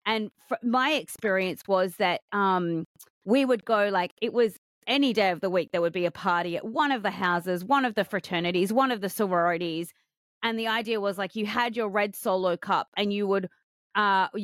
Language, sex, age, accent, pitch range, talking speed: English, female, 30-49, Australian, 185-230 Hz, 210 wpm